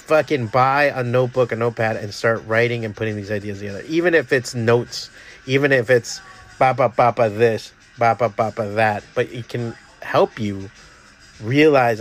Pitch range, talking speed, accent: 115-140 Hz, 175 wpm, American